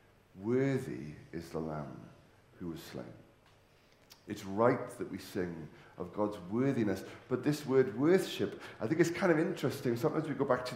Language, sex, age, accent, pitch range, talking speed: English, male, 40-59, British, 105-135 Hz, 165 wpm